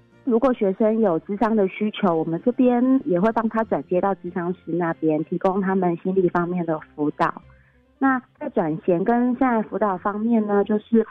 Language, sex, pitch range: Chinese, female, 170-225 Hz